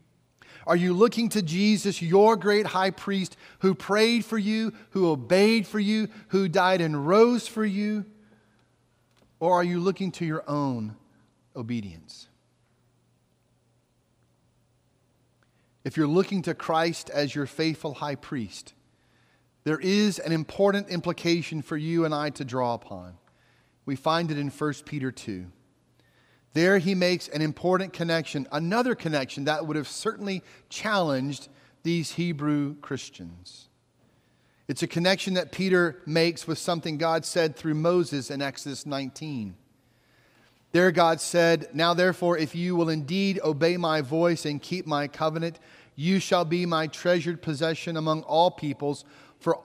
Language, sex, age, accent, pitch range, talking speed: English, male, 40-59, American, 140-185 Hz, 140 wpm